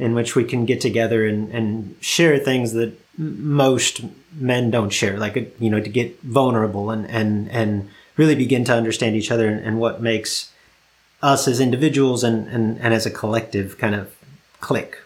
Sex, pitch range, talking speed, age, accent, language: male, 115-145 Hz, 190 wpm, 30-49, American, English